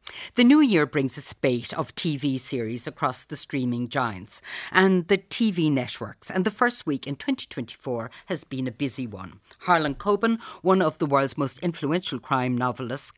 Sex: female